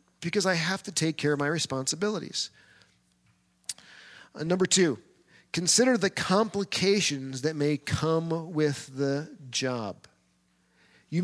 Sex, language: male, English